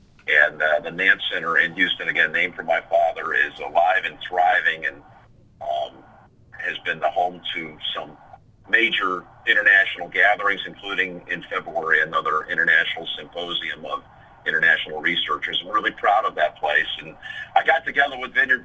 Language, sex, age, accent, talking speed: English, male, 50-69, American, 155 wpm